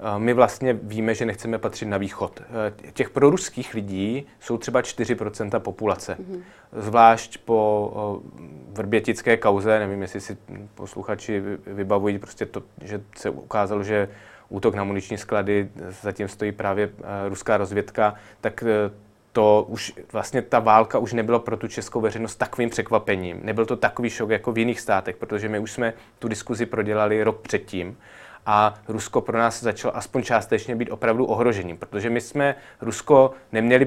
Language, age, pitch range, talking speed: Czech, 20-39, 105-120 Hz, 145 wpm